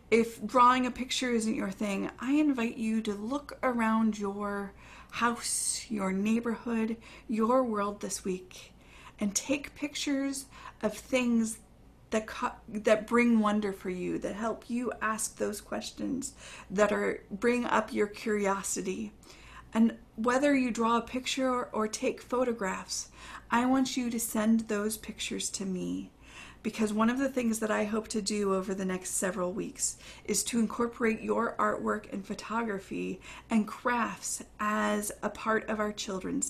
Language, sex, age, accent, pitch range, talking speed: English, female, 40-59, American, 200-245 Hz, 155 wpm